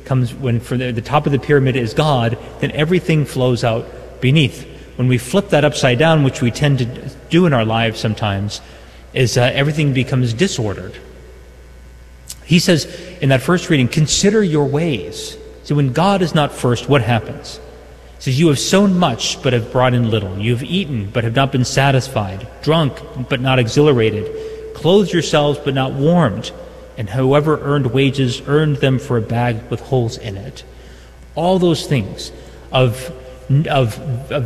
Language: English